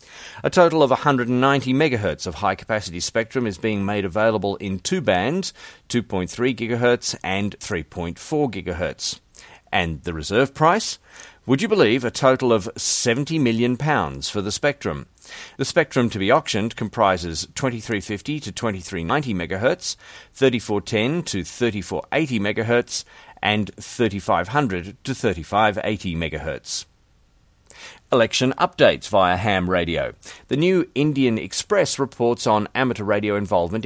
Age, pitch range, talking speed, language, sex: 40-59, 95-130 Hz, 125 wpm, English, male